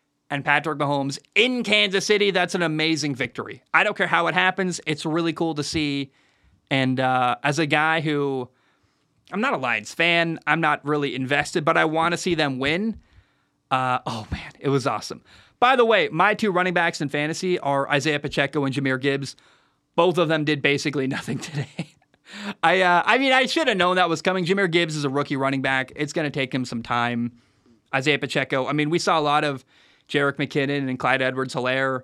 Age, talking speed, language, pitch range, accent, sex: 20-39, 205 wpm, English, 135-170 Hz, American, male